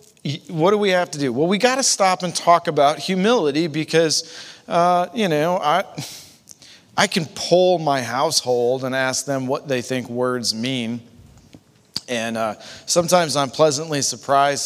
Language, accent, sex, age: English, American, male, 40-59